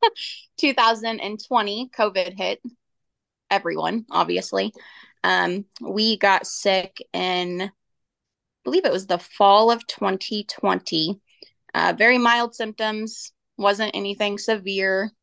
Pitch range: 190-225 Hz